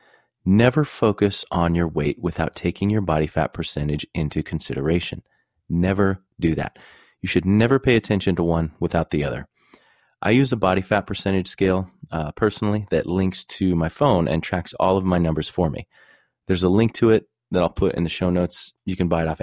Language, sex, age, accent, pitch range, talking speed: English, male, 30-49, American, 80-105 Hz, 200 wpm